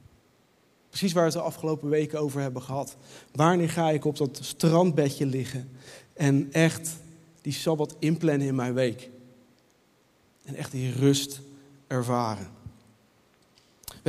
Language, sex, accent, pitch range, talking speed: Dutch, male, Dutch, 155-210 Hz, 130 wpm